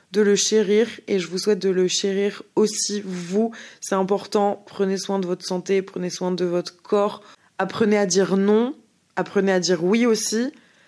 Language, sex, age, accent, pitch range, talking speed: French, female, 20-39, French, 185-210 Hz, 180 wpm